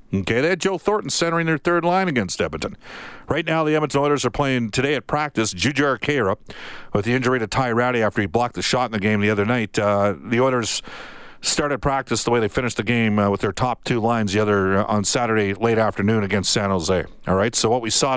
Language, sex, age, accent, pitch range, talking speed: English, male, 50-69, American, 105-130 Hz, 240 wpm